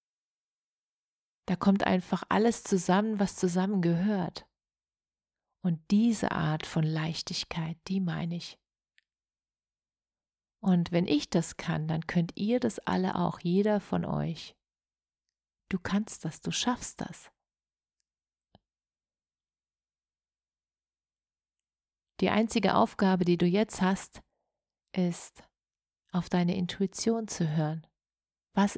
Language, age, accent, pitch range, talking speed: German, 40-59, German, 165-200 Hz, 105 wpm